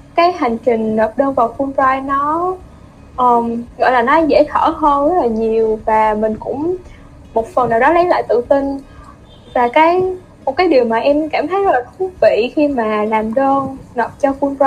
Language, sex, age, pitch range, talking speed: Vietnamese, female, 20-39, 230-315 Hz, 205 wpm